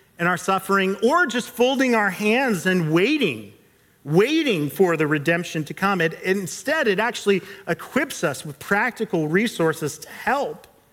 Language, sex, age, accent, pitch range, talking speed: English, male, 40-59, American, 160-220 Hz, 150 wpm